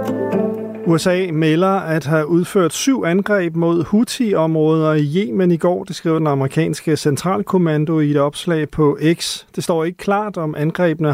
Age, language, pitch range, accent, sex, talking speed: 40-59, Danish, 145-185 Hz, native, male, 155 wpm